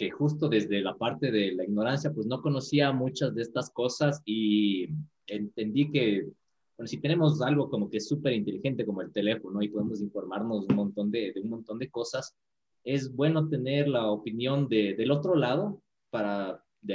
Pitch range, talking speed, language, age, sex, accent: 105-145 Hz, 185 wpm, Spanish, 30-49, male, Mexican